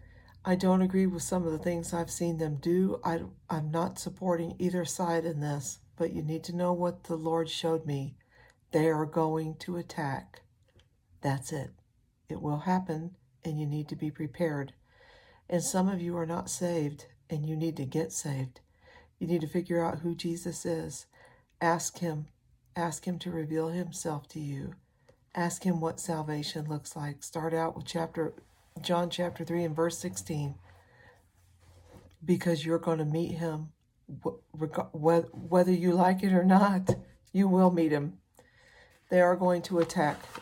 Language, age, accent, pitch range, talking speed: English, 60-79, American, 150-175 Hz, 165 wpm